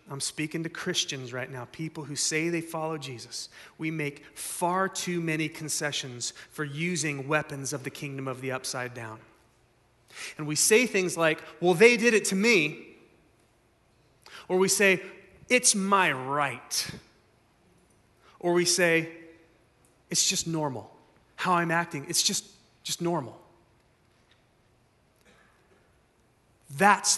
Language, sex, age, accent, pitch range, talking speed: English, male, 30-49, American, 140-190 Hz, 130 wpm